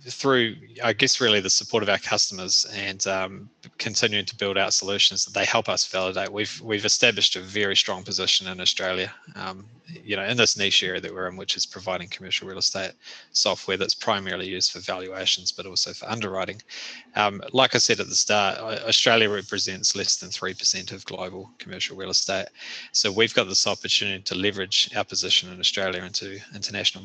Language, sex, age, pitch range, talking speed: English, male, 20-39, 95-110 Hz, 195 wpm